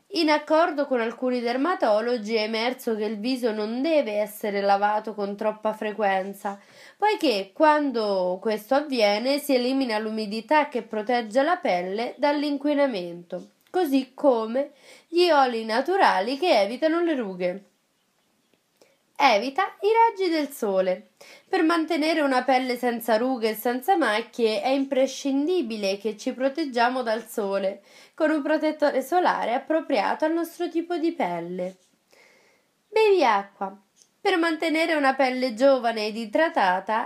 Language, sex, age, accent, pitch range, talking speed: Italian, female, 20-39, native, 220-305 Hz, 125 wpm